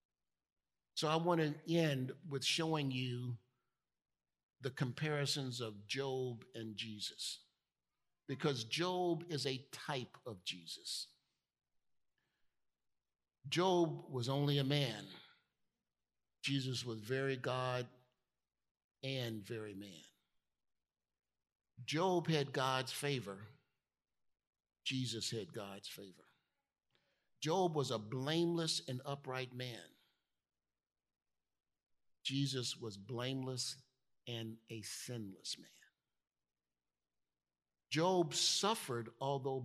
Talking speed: 90 wpm